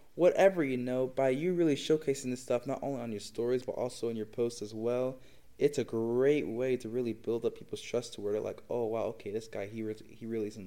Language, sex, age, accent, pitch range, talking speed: English, male, 20-39, American, 115-145 Hz, 245 wpm